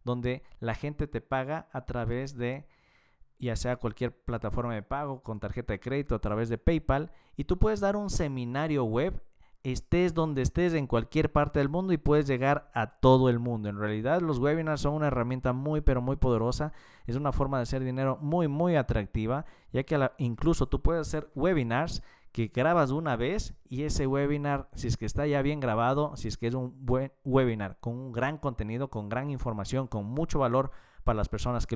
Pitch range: 120-145 Hz